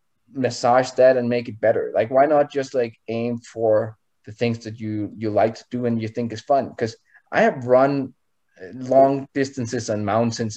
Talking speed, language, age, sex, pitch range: 195 wpm, English, 20-39, male, 120-165 Hz